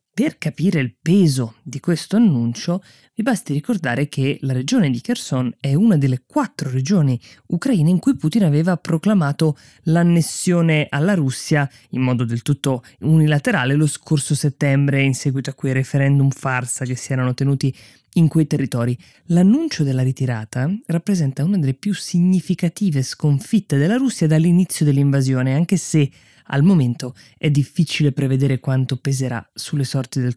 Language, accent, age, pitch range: Italian, native, 20-39, 130-160 Hz